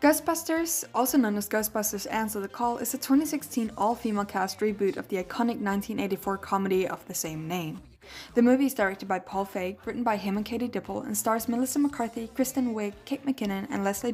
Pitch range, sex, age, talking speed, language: 195-250 Hz, female, 10-29, 195 wpm, English